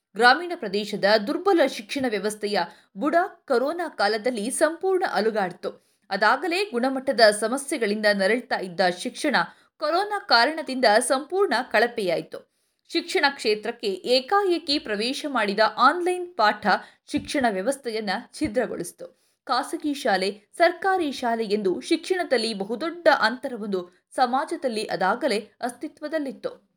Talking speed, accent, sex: 90 wpm, native, female